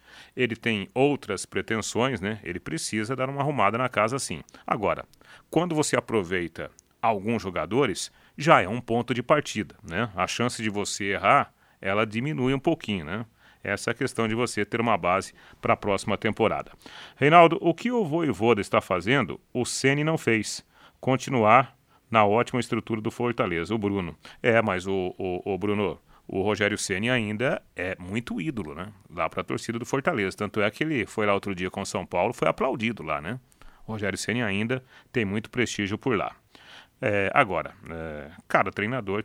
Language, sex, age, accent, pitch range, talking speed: Portuguese, male, 40-59, Brazilian, 105-130 Hz, 180 wpm